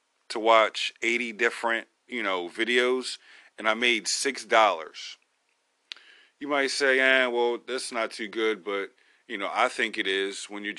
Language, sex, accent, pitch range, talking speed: English, male, American, 100-120 Hz, 165 wpm